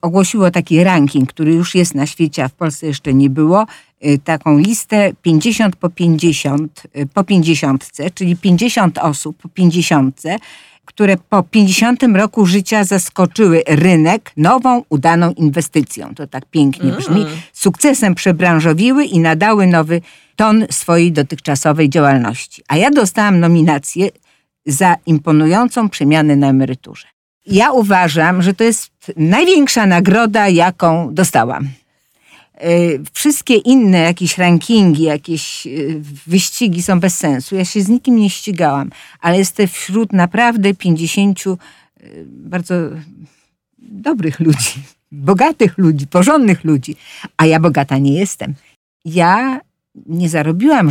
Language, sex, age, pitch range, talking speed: Polish, female, 50-69, 155-195 Hz, 120 wpm